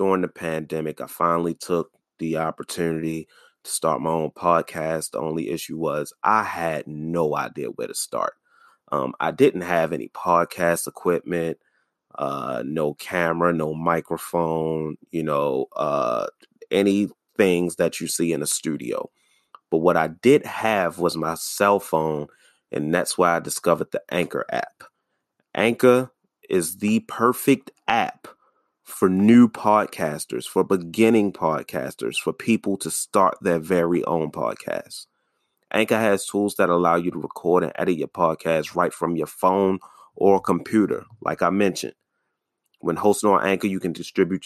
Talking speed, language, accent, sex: 150 wpm, English, American, male